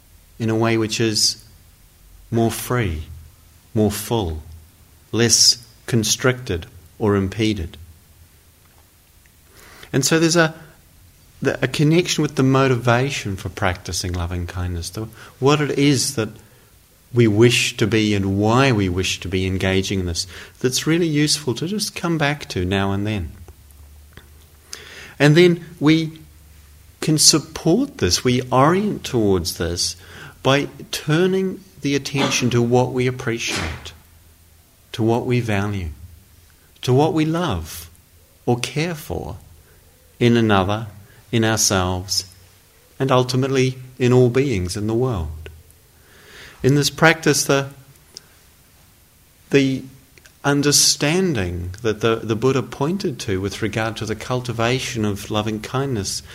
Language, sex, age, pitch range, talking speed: English, male, 50-69, 90-130 Hz, 120 wpm